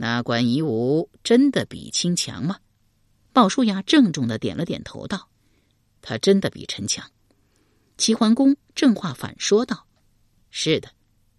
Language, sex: Chinese, female